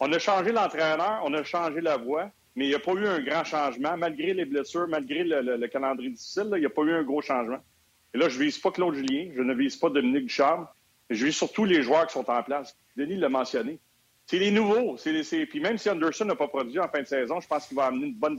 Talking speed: 280 wpm